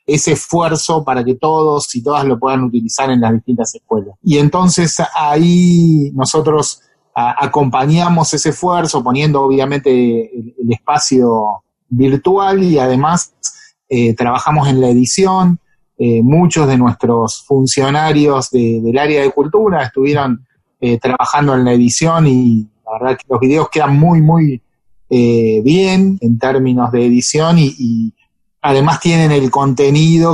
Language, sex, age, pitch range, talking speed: Spanish, male, 30-49, 125-165 Hz, 140 wpm